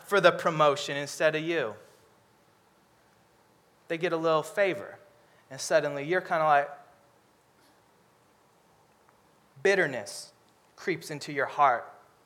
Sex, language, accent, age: male, English, American, 20-39